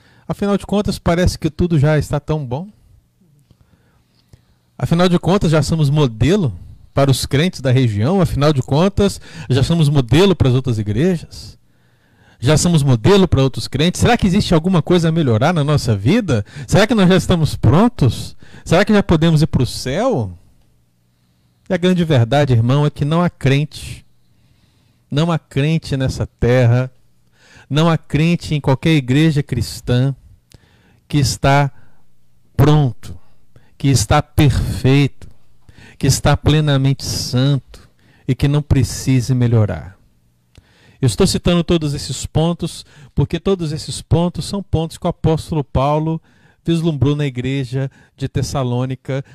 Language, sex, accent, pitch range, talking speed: Portuguese, male, Brazilian, 120-160 Hz, 145 wpm